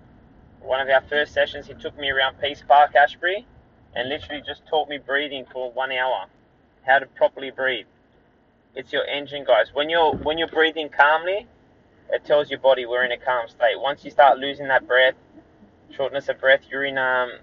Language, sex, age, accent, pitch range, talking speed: English, male, 20-39, Australian, 130-155 Hz, 195 wpm